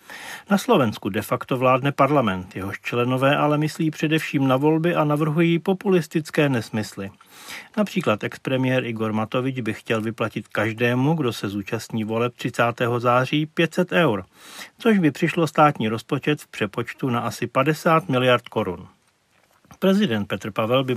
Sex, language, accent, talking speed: male, Czech, native, 140 wpm